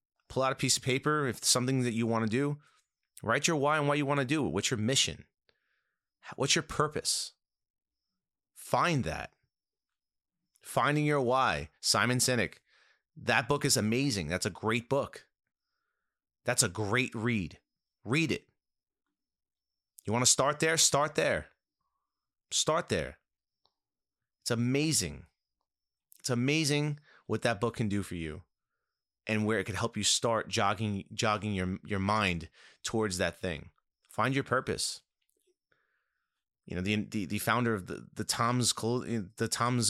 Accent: American